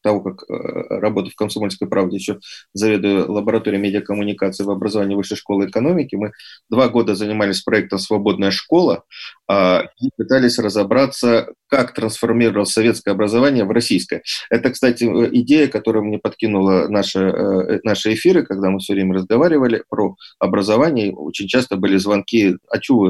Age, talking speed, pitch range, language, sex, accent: 30-49, 140 wpm, 100-120 Hz, Russian, male, native